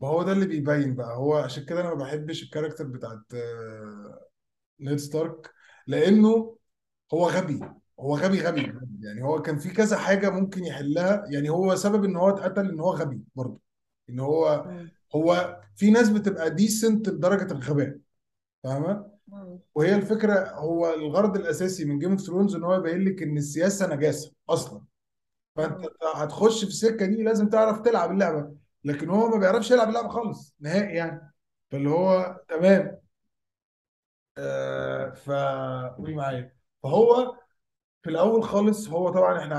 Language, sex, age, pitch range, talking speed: Arabic, male, 20-39, 150-190 Hz, 150 wpm